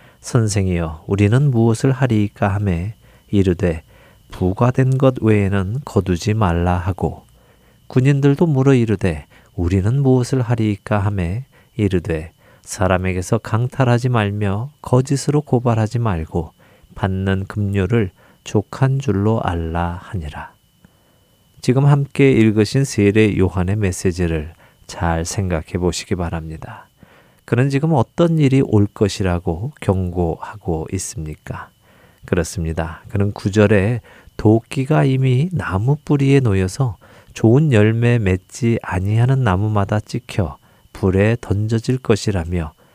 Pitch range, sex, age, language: 95-125 Hz, male, 40-59, Korean